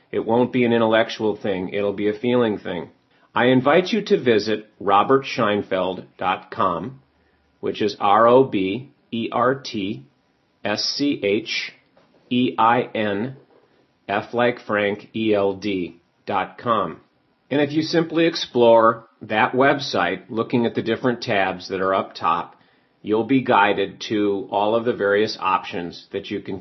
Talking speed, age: 110 wpm, 40-59